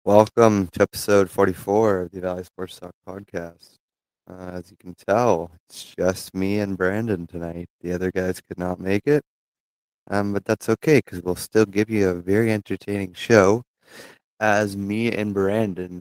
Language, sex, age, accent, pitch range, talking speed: English, male, 20-39, American, 90-100 Hz, 170 wpm